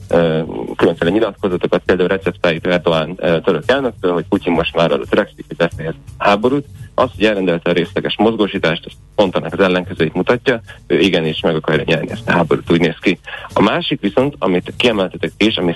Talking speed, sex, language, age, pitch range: 165 wpm, male, Hungarian, 30-49, 85-100 Hz